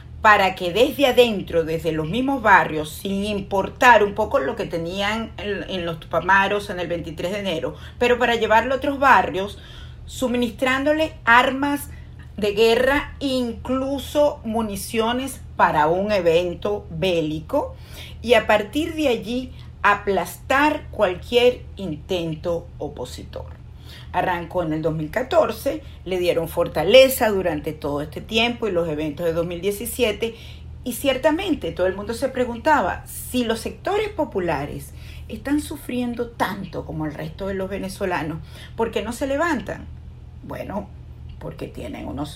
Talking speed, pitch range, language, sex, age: 130 wpm, 175-255 Hz, Spanish, female, 50-69